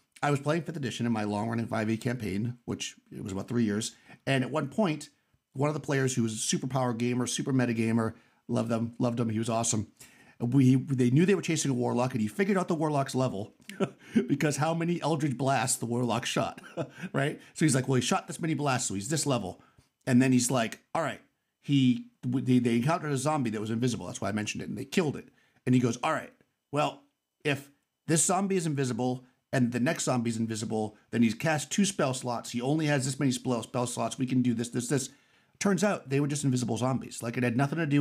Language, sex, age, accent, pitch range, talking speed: English, male, 50-69, American, 120-150 Hz, 235 wpm